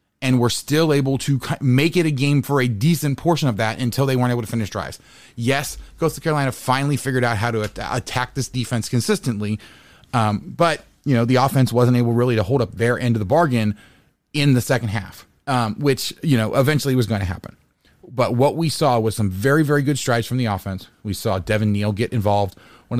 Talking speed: 220 wpm